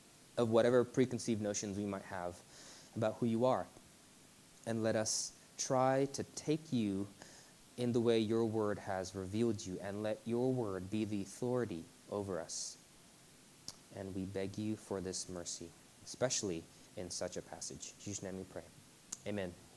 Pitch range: 115-155 Hz